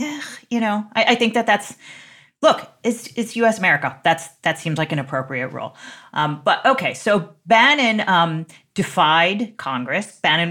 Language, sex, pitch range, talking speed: English, female, 140-200 Hz, 165 wpm